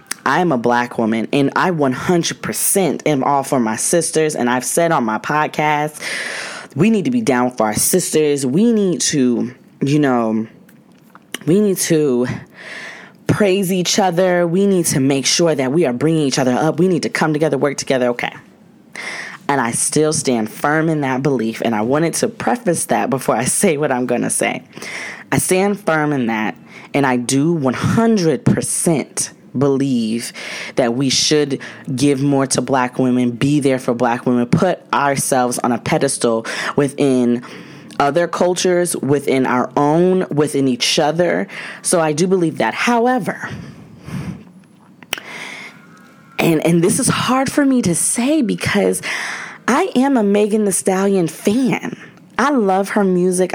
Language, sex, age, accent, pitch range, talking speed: English, female, 20-39, American, 130-185 Hz, 160 wpm